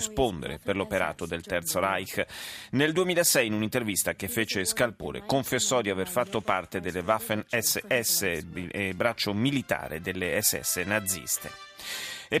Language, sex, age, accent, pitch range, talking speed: Italian, male, 30-49, native, 105-130 Hz, 125 wpm